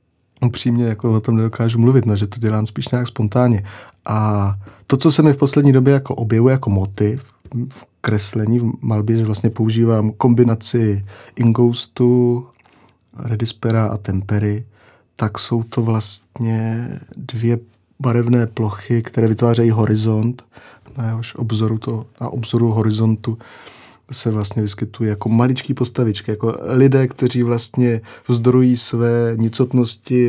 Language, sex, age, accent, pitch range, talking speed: Czech, male, 30-49, native, 110-120 Hz, 135 wpm